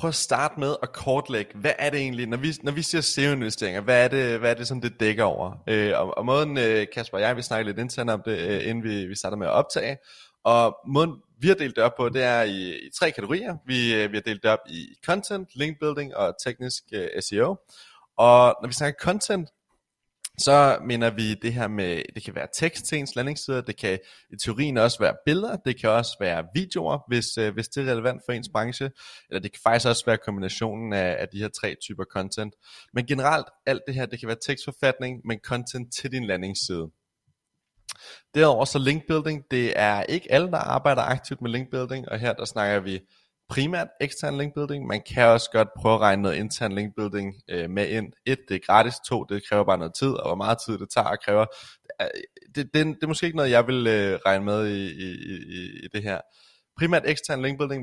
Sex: male